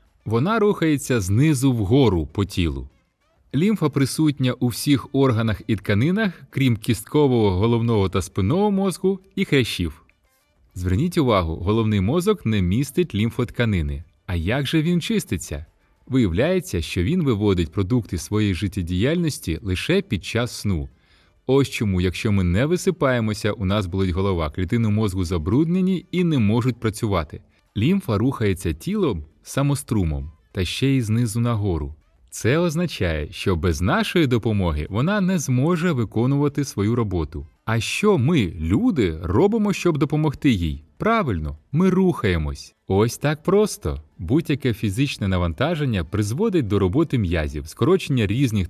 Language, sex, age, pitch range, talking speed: Ukrainian, male, 20-39, 90-145 Hz, 130 wpm